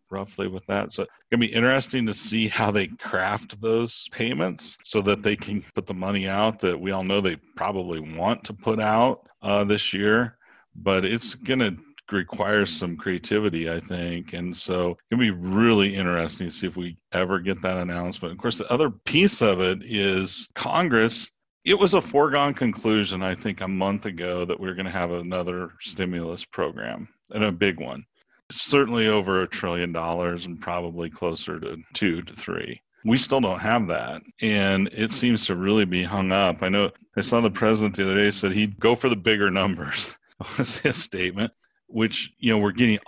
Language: English